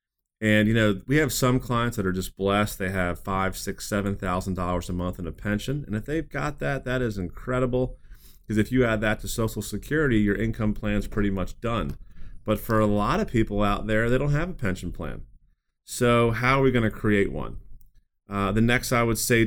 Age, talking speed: 30-49, 220 wpm